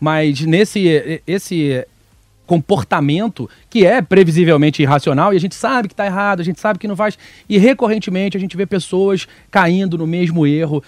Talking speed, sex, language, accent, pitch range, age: 170 wpm, male, Portuguese, Brazilian, 150-195 Hz, 30-49